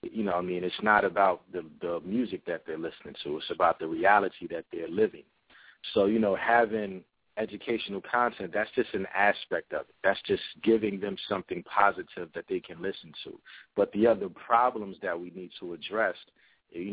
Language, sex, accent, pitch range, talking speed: English, male, American, 95-110 Hz, 190 wpm